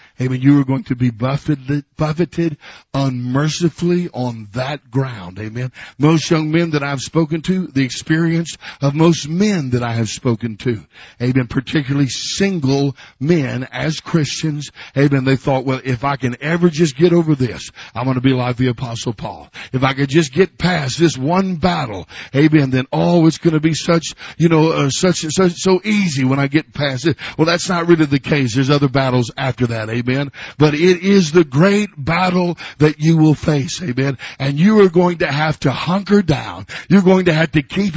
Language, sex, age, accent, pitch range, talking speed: English, male, 50-69, American, 135-190 Hz, 195 wpm